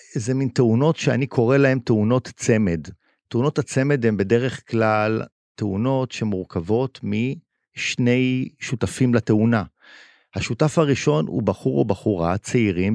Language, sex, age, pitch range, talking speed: Hebrew, male, 50-69, 95-125 Hz, 115 wpm